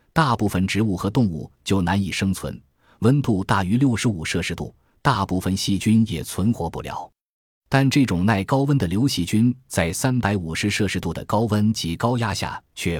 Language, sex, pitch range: Chinese, male, 85-115 Hz